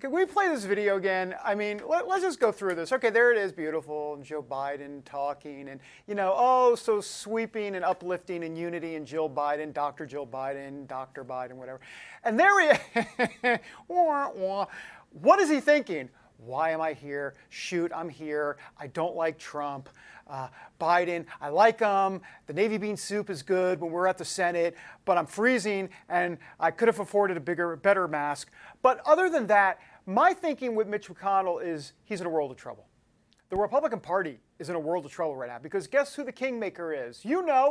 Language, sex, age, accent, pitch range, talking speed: English, male, 50-69, American, 155-225 Hz, 195 wpm